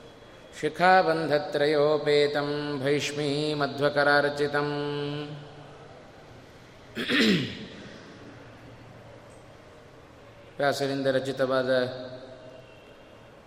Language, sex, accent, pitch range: Kannada, male, native, 135-155 Hz